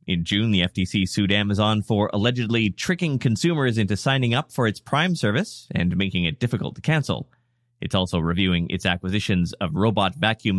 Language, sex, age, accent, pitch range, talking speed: English, male, 30-49, American, 95-130 Hz, 175 wpm